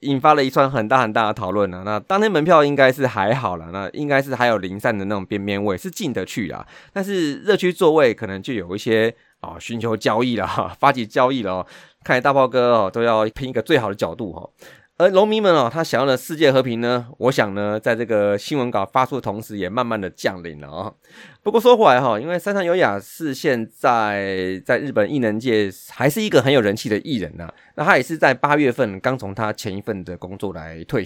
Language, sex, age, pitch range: Chinese, male, 20-39, 100-135 Hz